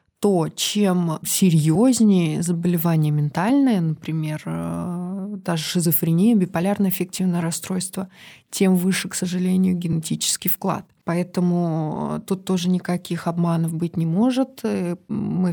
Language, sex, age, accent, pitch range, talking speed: Russian, female, 20-39, native, 165-190 Hz, 100 wpm